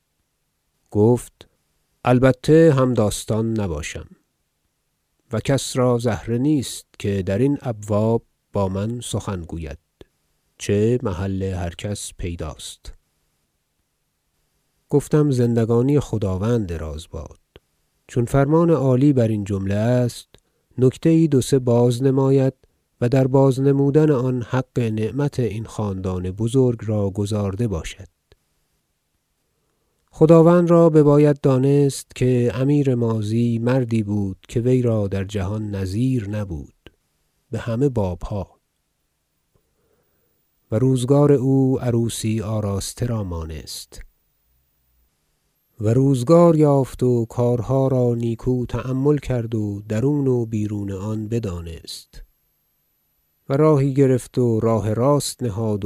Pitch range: 105-130 Hz